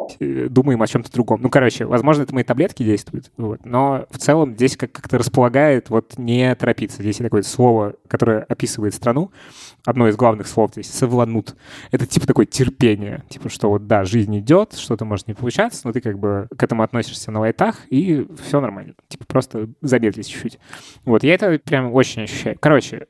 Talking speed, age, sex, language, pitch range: 180 wpm, 20-39, male, Russian, 110-130 Hz